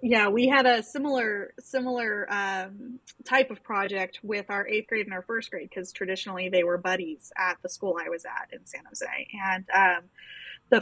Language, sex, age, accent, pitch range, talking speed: English, female, 10-29, American, 180-210 Hz, 195 wpm